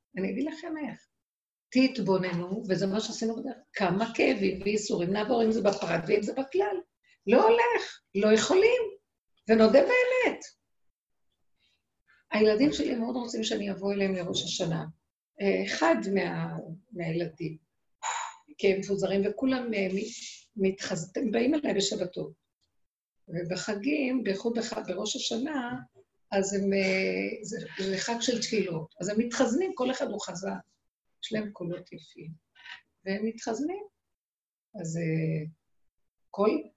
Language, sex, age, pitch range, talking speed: Hebrew, female, 50-69, 190-265 Hz, 115 wpm